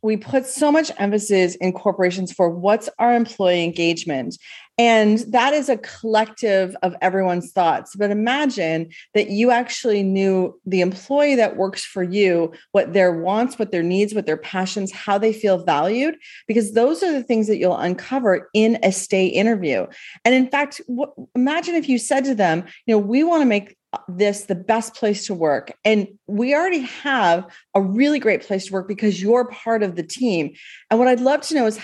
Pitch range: 190-250 Hz